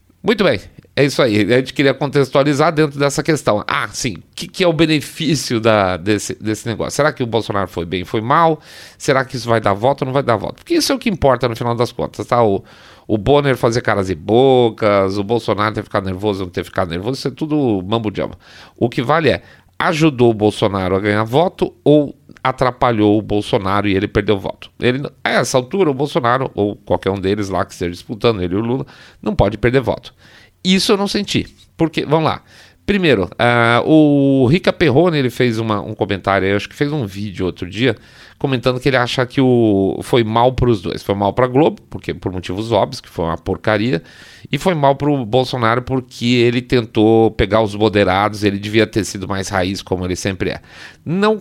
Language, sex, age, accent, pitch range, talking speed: Portuguese, male, 40-59, Brazilian, 100-140 Hz, 215 wpm